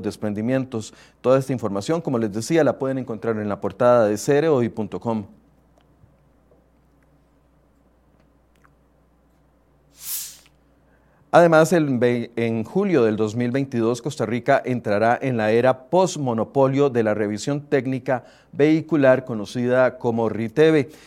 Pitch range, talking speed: 115-150 Hz, 105 wpm